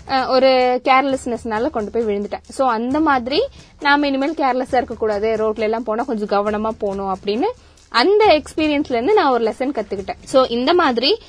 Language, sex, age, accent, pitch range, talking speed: Tamil, female, 20-39, native, 230-290 Hz, 155 wpm